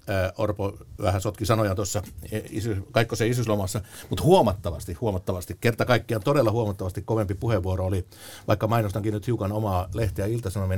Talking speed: 140 wpm